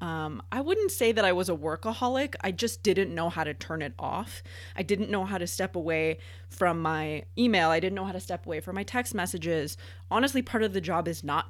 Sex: female